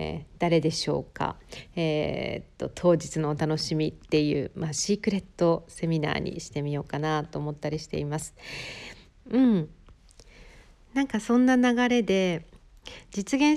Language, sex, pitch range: Japanese, female, 165-225 Hz